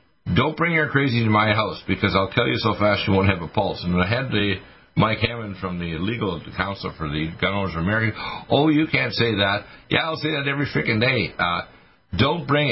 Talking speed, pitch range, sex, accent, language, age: 230 wpm, 95-120 Hz, male, American, English, 60-79